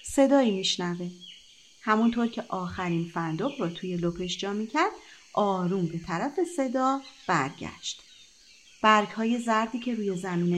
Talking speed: 125 wpm